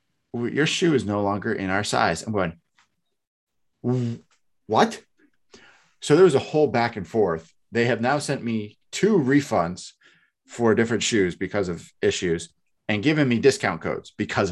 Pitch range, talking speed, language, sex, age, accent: 90-130 Hz, 155 wpm, English, male, 30-49, American